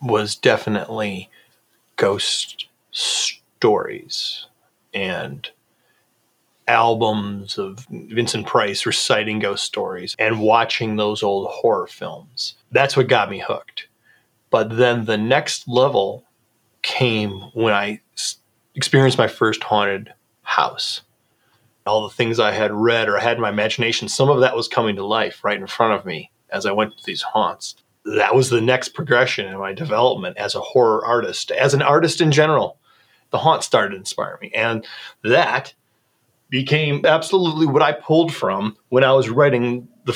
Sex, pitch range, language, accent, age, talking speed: male, 115-165 Hz, English, American, 30-49, 150 wpm